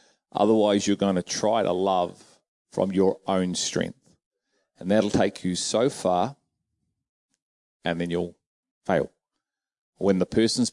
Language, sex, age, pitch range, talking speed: English, male, 30-49, 95-115 Hz, 135 wpm